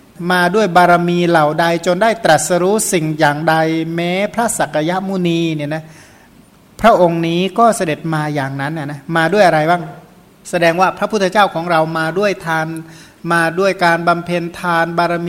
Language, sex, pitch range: Thai, male, 160-190 Hz